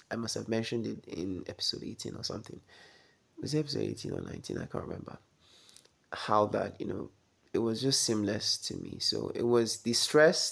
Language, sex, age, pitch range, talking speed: English, male, 20-39, 105-135 Hz, 195 wpm